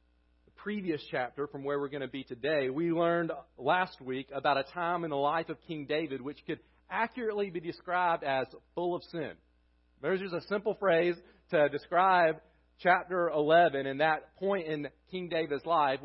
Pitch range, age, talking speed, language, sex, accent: 145-185 Hz, 40-59, 175 wpm, English, male, American